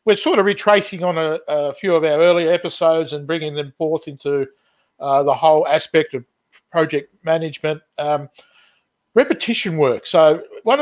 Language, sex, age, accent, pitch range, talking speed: English, male, 50-69, Australian, 140-170 Hz, 160 wpm